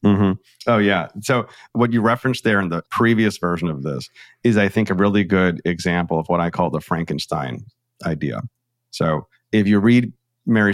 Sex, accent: male, American